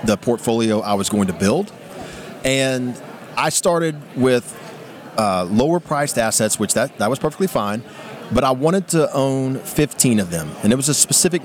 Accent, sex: American, male